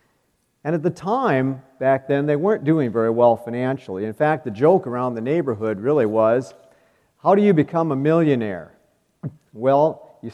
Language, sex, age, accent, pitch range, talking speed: English, male, 50-69, American, 115-150 Hz, 170 wpm